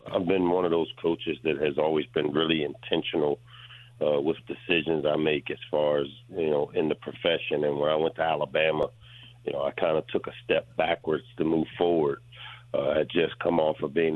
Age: 50-69